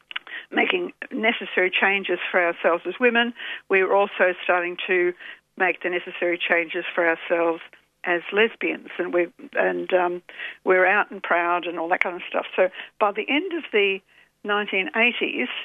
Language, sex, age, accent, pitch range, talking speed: English, female, 60-79, Australian, 180-230 Hz, 160 wpm